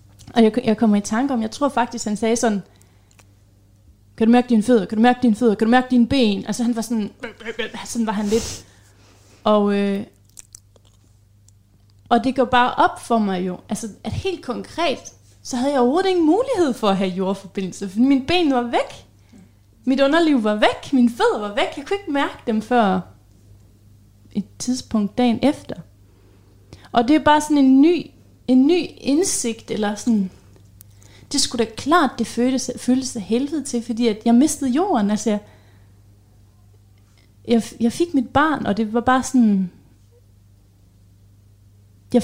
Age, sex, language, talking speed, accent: 30-49, female, Danish, 170 wpm, native